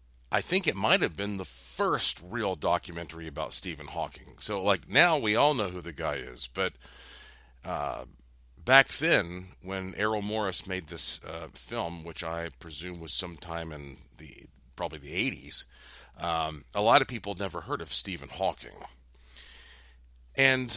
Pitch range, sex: 80-115 Hz, male